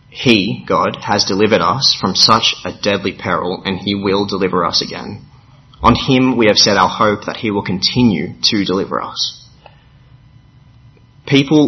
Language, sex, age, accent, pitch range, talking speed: English, male, 30-49, Australian, 100-125 Hz, 160 wpm